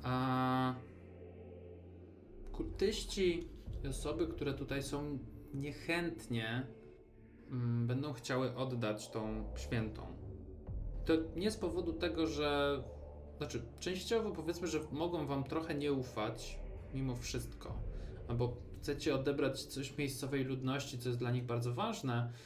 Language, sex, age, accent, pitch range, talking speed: Polish, male, 20-39, native, 110-140 Hz, 115 wpm